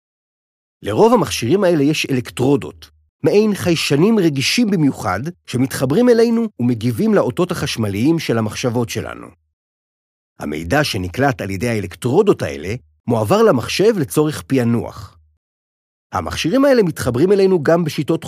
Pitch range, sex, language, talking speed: 100-155 Hz, male, Hebrew, 110 wpm